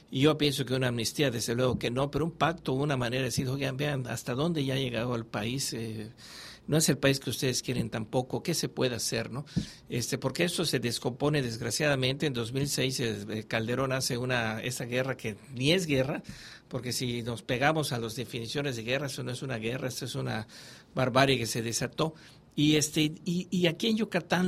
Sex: male